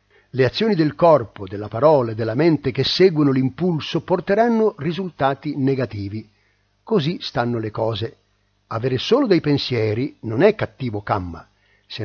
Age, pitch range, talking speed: 50-69, 115-165 Hz, 140 wpm